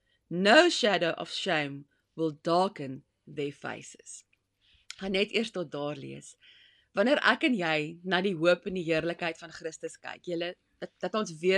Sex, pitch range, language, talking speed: female, 160-240 Hz, English, 165 wpm